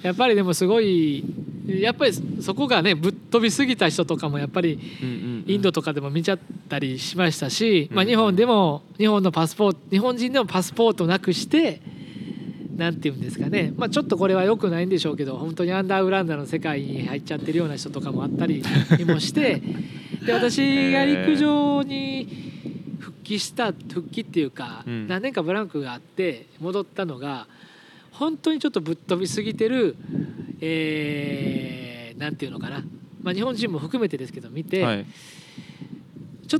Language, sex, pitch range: Japanese, male, 160-220 Hz